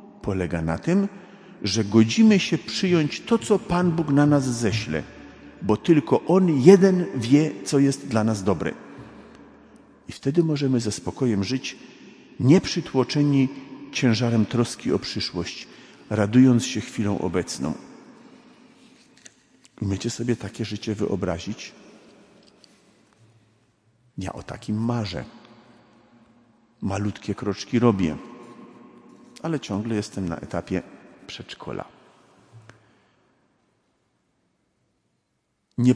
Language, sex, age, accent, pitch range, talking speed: Polish, male, 50-69, native, 95-125 Hz, 95 wpm